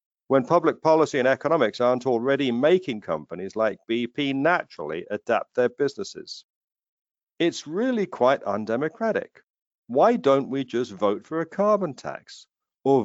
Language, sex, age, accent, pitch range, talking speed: English, male, 50-69, British, 120-155 Hz, 135 wpm